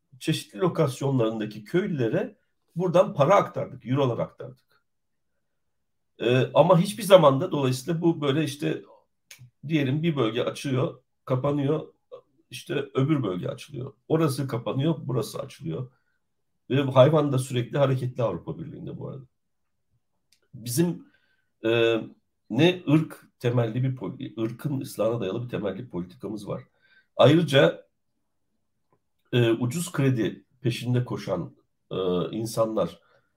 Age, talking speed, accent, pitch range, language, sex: 60-79, 105 wpm, native, 115-155 Hz, Turkish, male